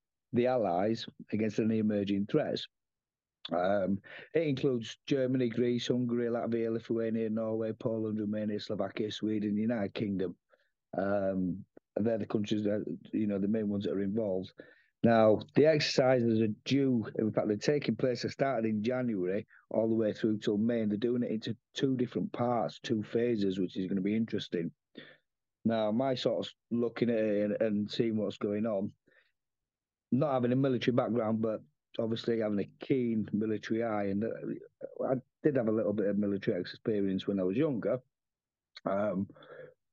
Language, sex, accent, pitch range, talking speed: English, male, British, 105-125 Hz, 165 wpm